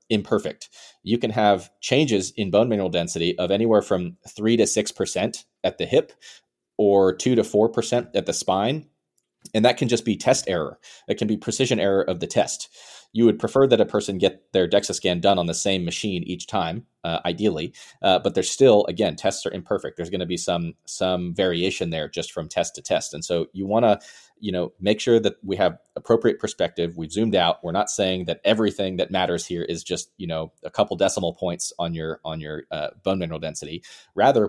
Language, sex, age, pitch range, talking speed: English, male, 30-49, 85-105 Hz, 215 wpm